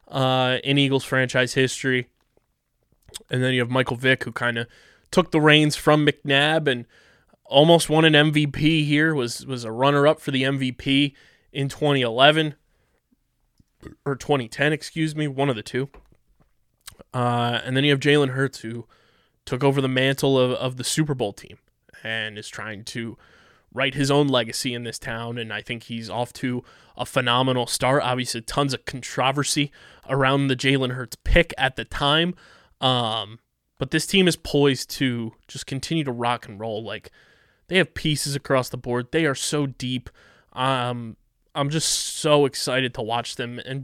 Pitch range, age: 125-150 Hz, 20-39